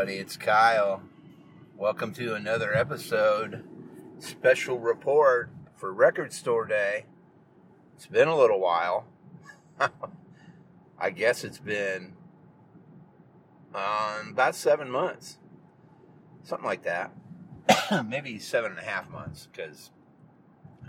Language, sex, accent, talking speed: English, male, American, 100 wpm